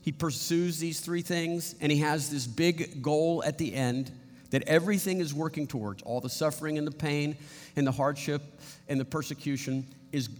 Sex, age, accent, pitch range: male, 50-69, American, 130-175 Hz